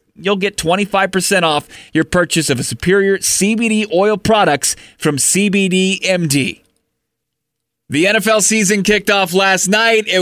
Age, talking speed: 30-49, 135 wpm